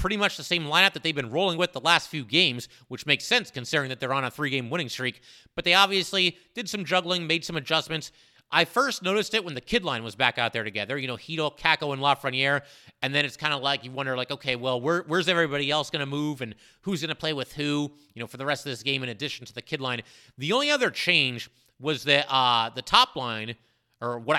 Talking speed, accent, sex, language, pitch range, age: 255 wpm, American, male, English, 130-170 Hz, 30-49